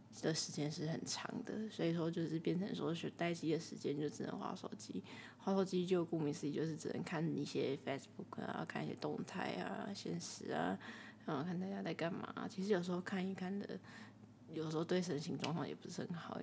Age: 20-39